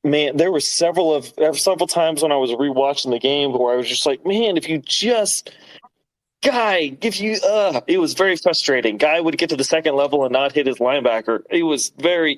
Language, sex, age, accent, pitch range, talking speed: English, male, 30-49, American, 135-180 Hz, 220 wpm